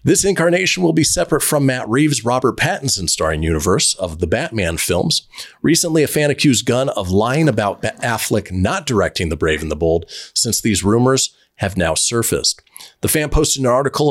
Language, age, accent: English, 40-59, American